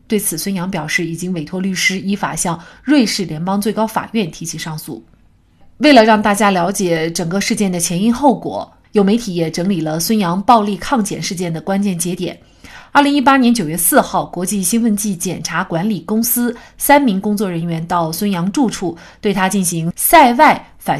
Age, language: 30-49, Chinese